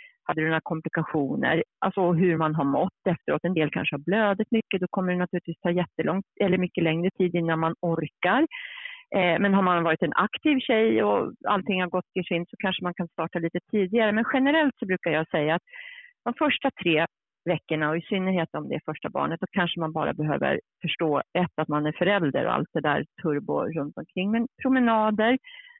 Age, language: 40-59, Swedish